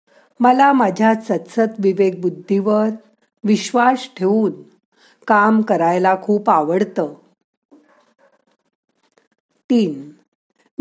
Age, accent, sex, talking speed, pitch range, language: 50-69, native, female, 65 wpm, 185-245 Hz, Marathi